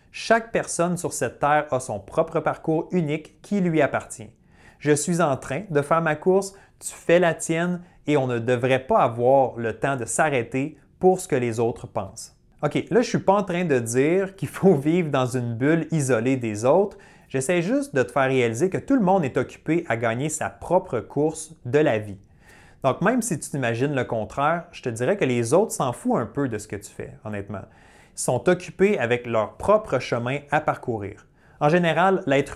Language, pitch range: French, 125-175 Hz